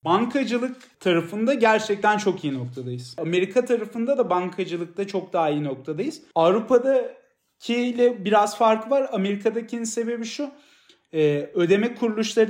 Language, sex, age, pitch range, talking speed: Turkish, male, 40-59, 170-220 Hz, 110 wpm